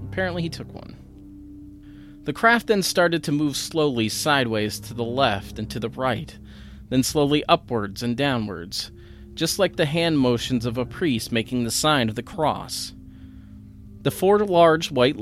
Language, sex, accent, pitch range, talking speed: English, male, American, 100-140 Hz, 165 wpm